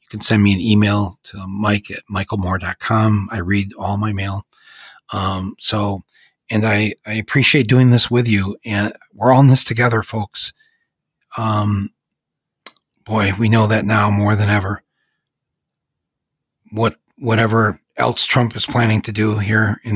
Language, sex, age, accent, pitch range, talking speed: English, male, 40-59, American, 105-125 Hz, 150 wpm